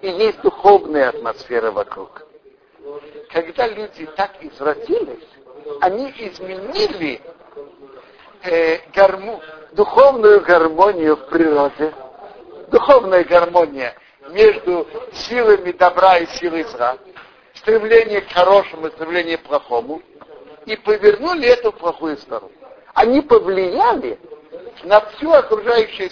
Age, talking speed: 60-79, 95 wpm